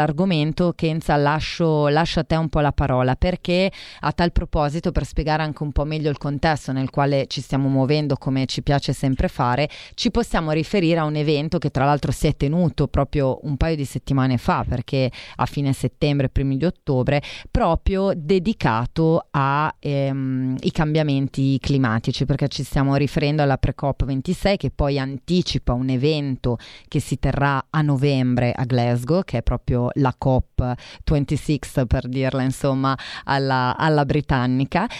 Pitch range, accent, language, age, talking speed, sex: 130-155 Hz, native, Italian, 30-49, 160 wpm, female